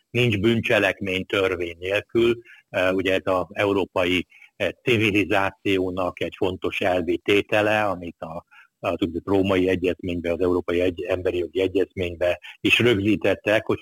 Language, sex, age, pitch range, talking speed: Hungarian, male, 60-79, 90-110 Hz, 130 wpm